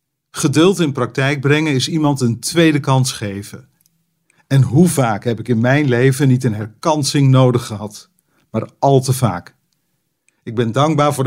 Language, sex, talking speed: Dutch, male, 165 wpm